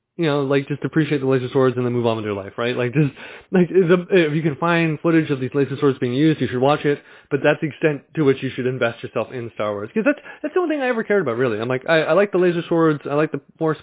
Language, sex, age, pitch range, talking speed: English, male, 20-39, 120-160 Hz, 305 wpm